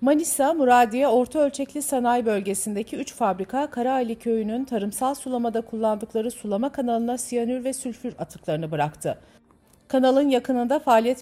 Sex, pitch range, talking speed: female, 180-255 Hz, 125 wpm